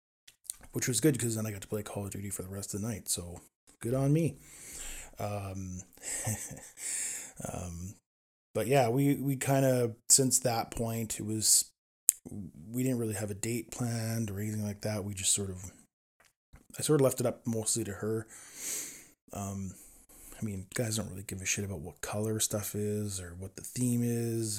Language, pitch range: English, 95-115 Hz